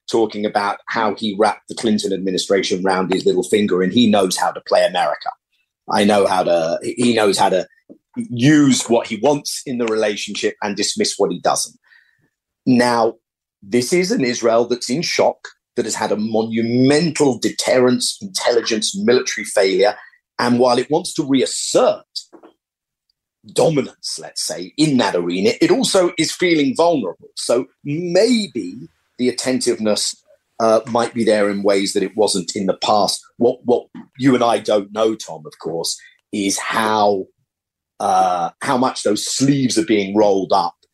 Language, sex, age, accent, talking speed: English, male, 40-59, British, 160 wpm